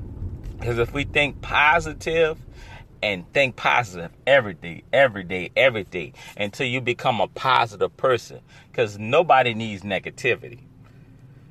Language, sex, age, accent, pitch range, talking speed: English, male, 40-59, American, 110-145 Hz, 125 wpm